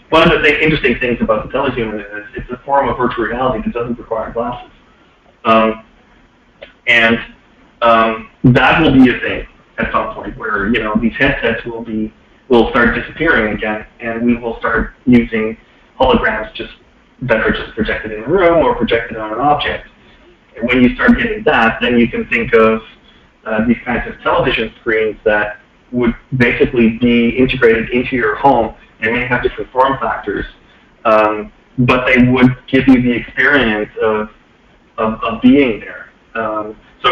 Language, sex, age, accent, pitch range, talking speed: English, male, 40-59, American, 110-130 Hz, 175 wpm